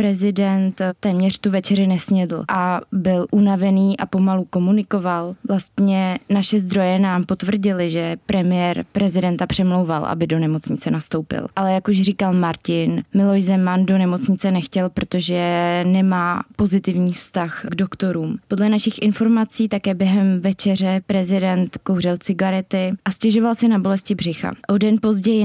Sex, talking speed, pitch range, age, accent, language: female, 135 wpm, 185-205 Hz, 20-39, native, Czech